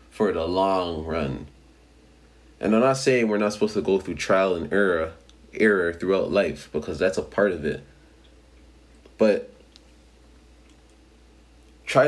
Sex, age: male, 30-49